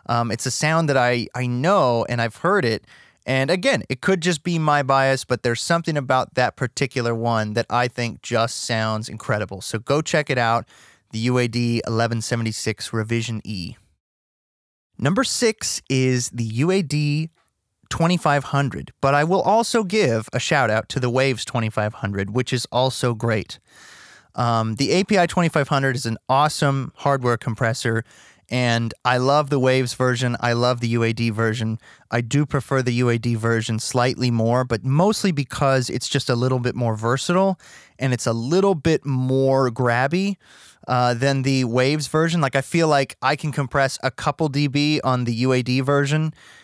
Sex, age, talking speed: male, 30-49, 165 wpm